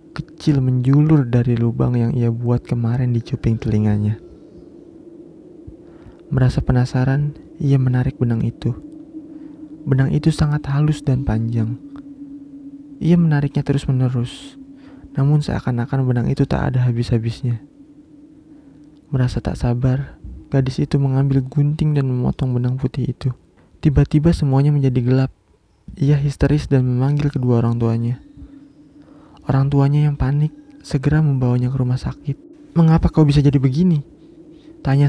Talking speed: 125 wpm